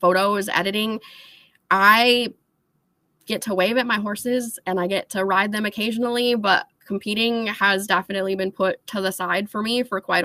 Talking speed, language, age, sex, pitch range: 170 wpm, English, 20-39, female, 180-210 Hz